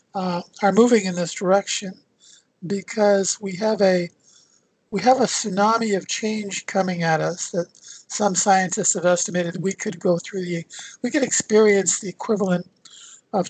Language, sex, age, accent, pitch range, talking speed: English, male, 50-69, American, 180-215 Hz, 155 wpm